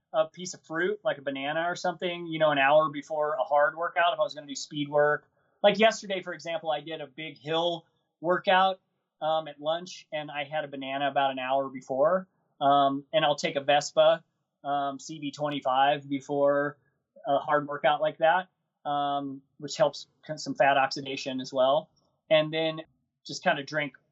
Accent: American